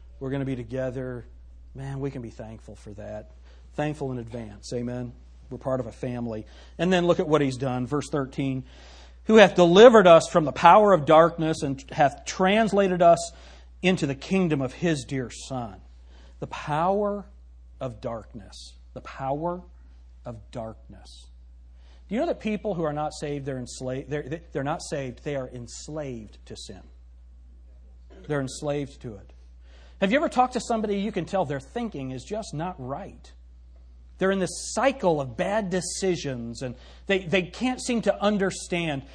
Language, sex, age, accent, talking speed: English, male, 40-59, American, 165 wpm